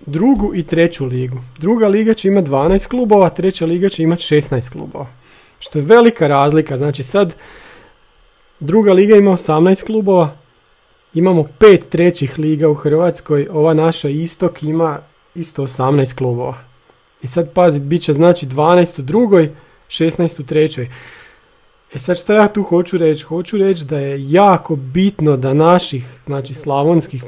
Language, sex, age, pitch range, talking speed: Croatian, male, 40-59, 140-180 Hz, 150 wpm